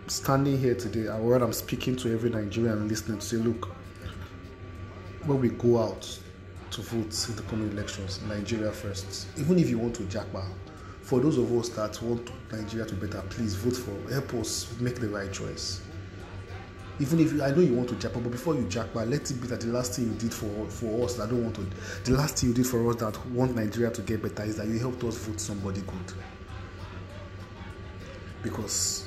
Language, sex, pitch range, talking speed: English, male, 95-120 Hz, 210 wpm